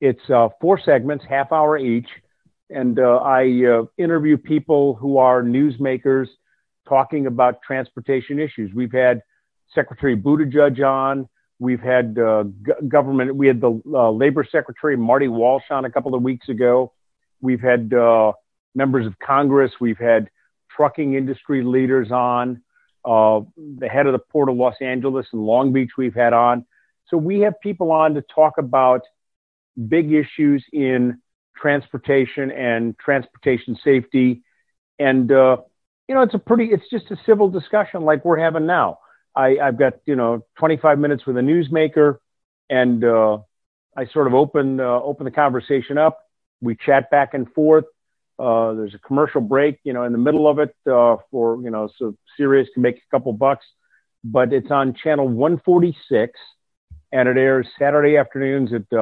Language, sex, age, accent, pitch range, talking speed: English, male, 50-69, American, 125-145 Hz, 165 wpm